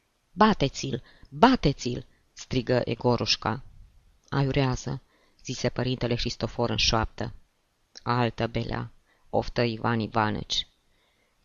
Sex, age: female, 20-39